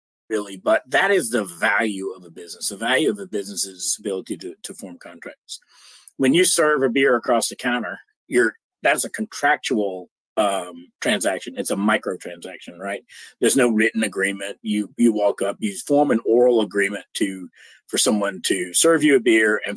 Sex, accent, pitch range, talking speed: male, American, 100-125 Hz, 175 wpm